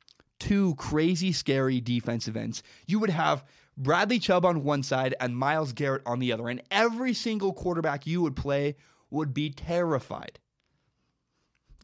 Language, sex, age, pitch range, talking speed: English, male, 20-39, 130-175 Hz, 150 wpm